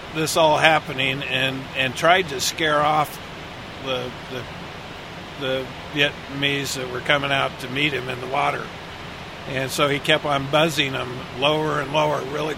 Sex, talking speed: male, 160 wpm